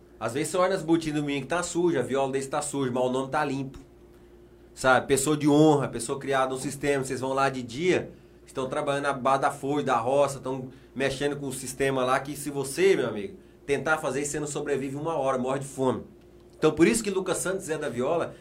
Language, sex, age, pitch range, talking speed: Portuguese, male, 20-39, 135-185 Hz, 240 wpm